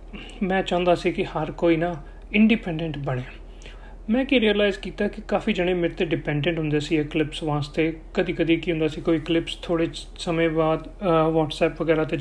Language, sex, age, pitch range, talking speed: Punjabi, male, 40-59, 155-195 Hz, 175 wpm